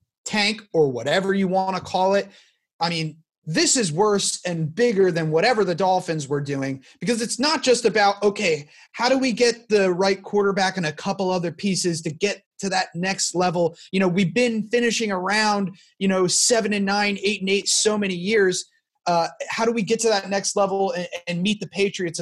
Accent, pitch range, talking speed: American, 170-215 Hz, 205 wpm